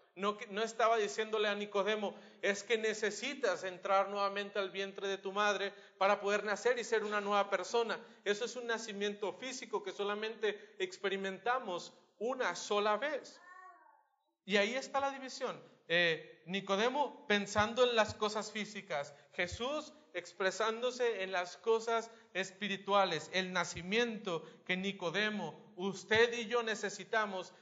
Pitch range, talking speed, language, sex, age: 145-210 Hz, 135 wpm, Spanish, male, 40-59